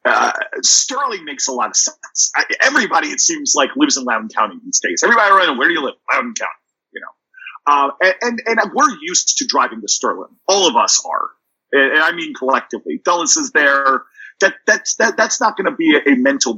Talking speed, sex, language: 220 wpm, male, English